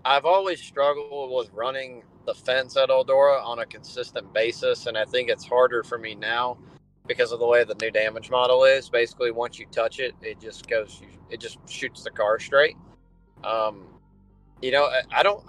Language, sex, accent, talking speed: English, male, American, 195 wpm